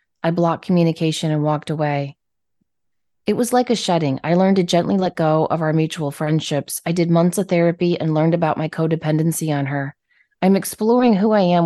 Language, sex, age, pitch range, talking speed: English, female, 30-49, 150-185 Hz, 195 wpm